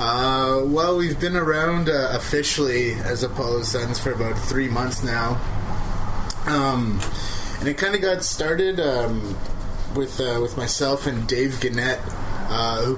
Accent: American